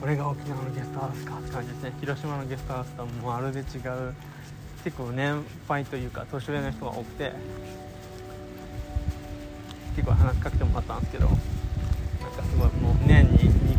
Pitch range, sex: 85-130 Hz, male